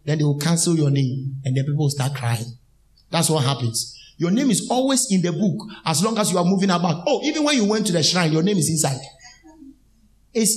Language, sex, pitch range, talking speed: English, male, 150-235 Hz, 240 wpm